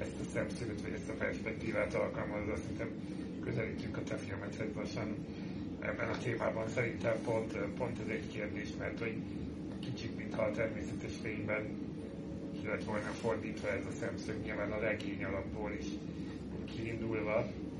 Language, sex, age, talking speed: Hungarian, male, 30-49, 145 wpm